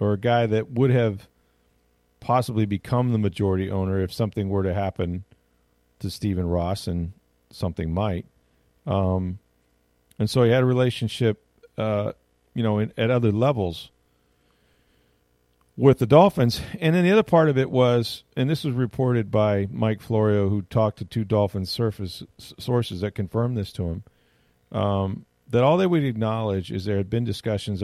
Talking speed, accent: 165 wpm, American